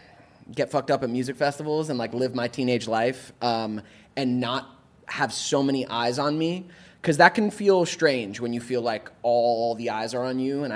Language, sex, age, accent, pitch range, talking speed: English, male, 20-39, American, 120-185 Hz, 205 wpm